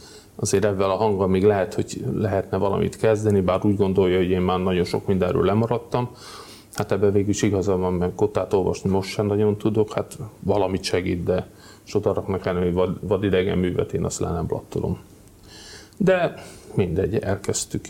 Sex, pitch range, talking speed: male, 95-110 Hz, 170 wpm